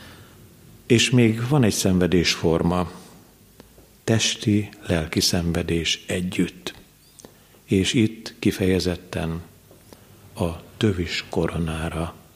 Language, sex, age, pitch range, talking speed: Hungarian, male, 50-69, 85-100 Hz, 75 wpm